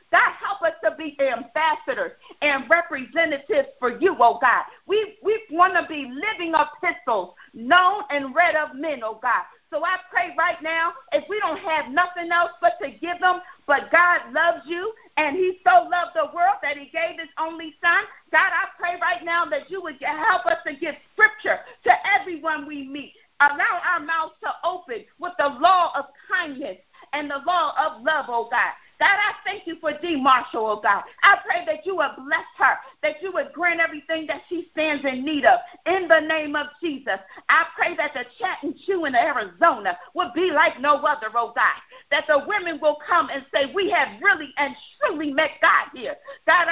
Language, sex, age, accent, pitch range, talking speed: English, female, 40-59, American, 290-355 Hz, 195 wpm